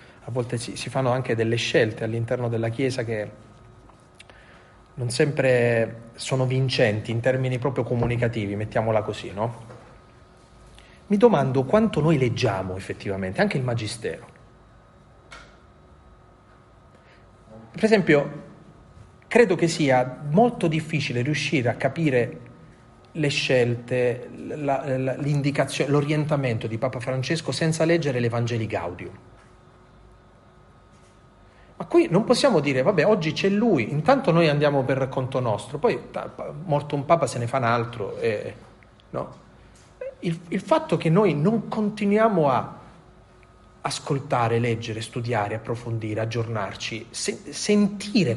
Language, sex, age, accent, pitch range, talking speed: Italian, male, 30-49, native, 115-165 Hz, 110 wpm